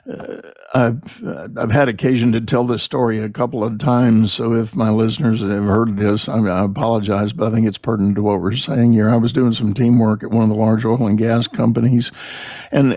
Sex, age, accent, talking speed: male, 60-79, American, 225 wpm